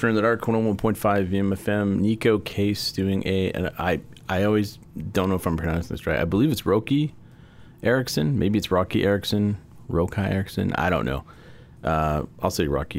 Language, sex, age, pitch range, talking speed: English, male, 30-49, 80-100 Hz, 195 wpm